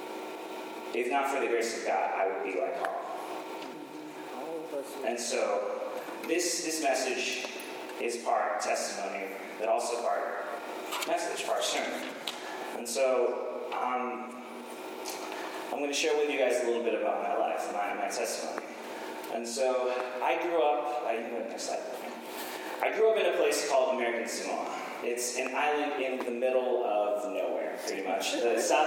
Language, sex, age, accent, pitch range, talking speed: English, male, 30-49, American, 120-140 Hz, 150 wpm